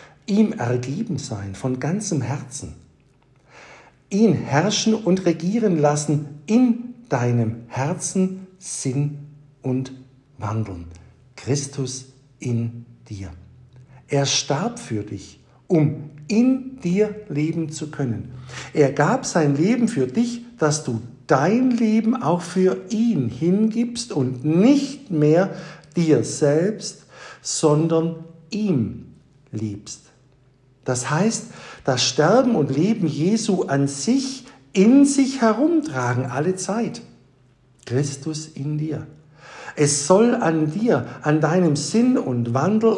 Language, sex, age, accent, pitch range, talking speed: German, male, 60-79, German, 130-195 Hz, 105 wpm